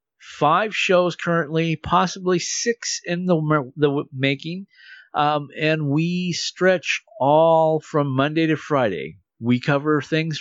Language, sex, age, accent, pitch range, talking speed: English, male, 50-69, American, 130-175 Hz, 120 wpm